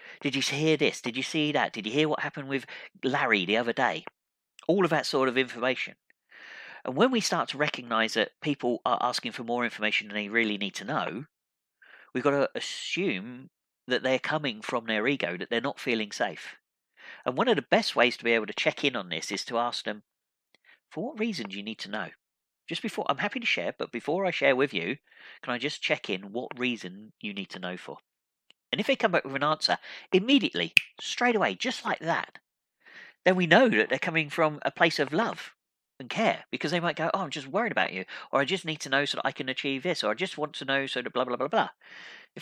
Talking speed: 240 wpm